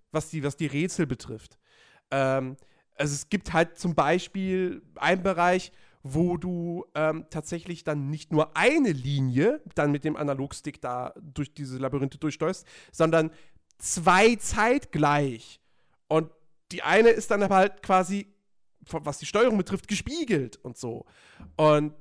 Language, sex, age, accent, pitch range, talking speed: German, male, 40-59, German, 150-215 Hz, 140 wpm